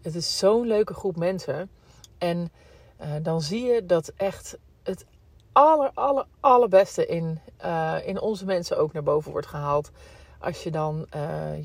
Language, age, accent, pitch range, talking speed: Dutch, 40-59, Dutch, 155-195 Hz, 160 wpm